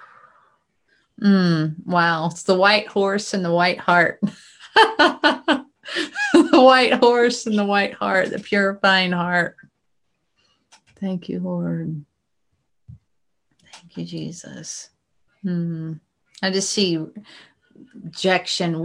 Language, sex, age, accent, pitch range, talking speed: English, female, 30-49, American, 160-195 Hz, 100 wpm